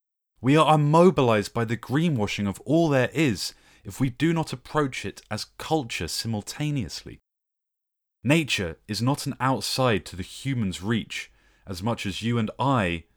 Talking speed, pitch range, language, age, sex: 155 wpm, 100-140 Hz, English, 30-49, male